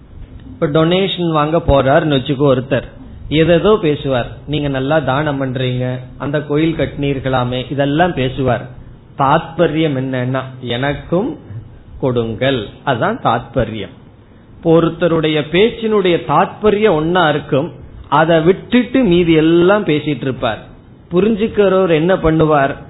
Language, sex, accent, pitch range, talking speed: Tamil, male, native, 130-175 Hz, 70 wpm